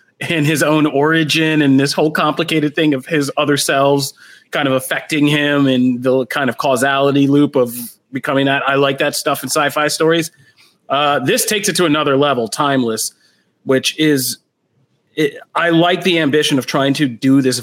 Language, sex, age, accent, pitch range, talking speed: English, male, 30-49, American, 125-150 Hz, 175 wpm